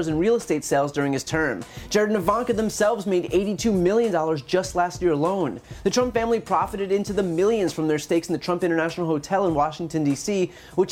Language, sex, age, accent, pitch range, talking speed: English, male, 30-49, American, 160-205 Hz, 205 wpm